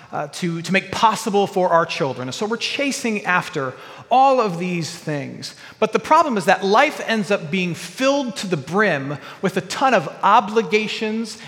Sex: male